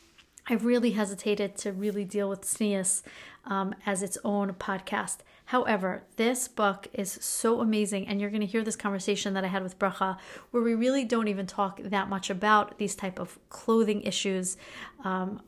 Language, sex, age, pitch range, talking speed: English, female, 40-59, 195-210 Hz, 180 wpm